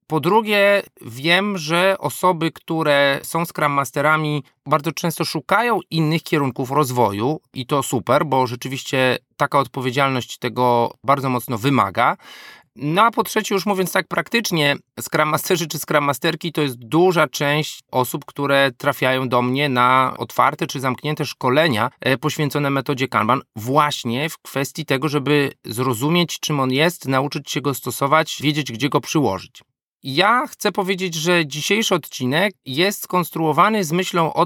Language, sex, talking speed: Polish, male, 145 wpm